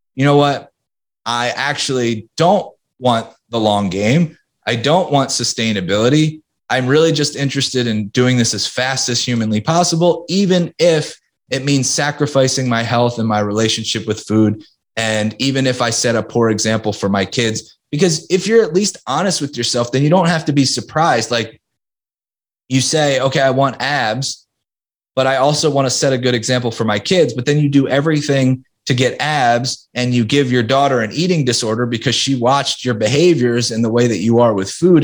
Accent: American